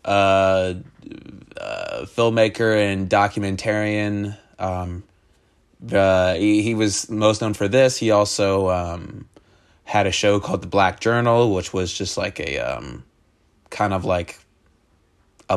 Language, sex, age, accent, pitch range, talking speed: English, male, 20-39, American, 95-110 Hz, 135 wpm